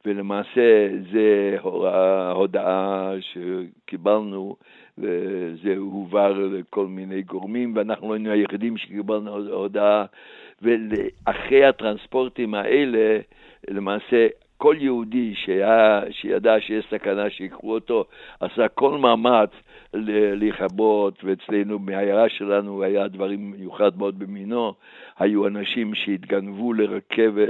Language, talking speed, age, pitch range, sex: English, 95 wpm, 60-79, 100-115 Hz, male